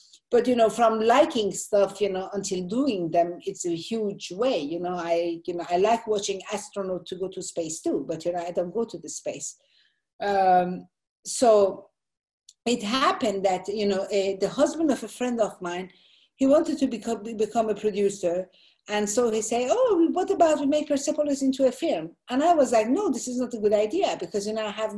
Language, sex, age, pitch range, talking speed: English, female, 50-69, 195-260 Hz, 215 wpm